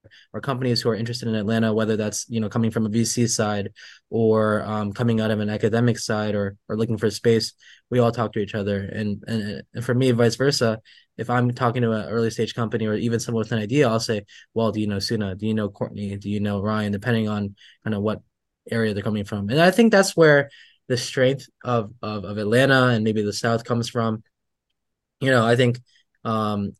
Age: 20-39